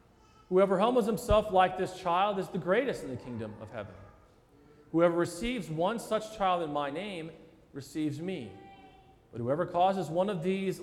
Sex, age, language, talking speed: male, 40-59, English, 165 wpm